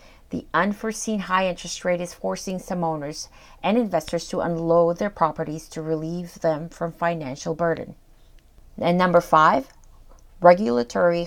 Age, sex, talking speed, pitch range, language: 30-49, female, 135 wpm, 160-180 Hz, English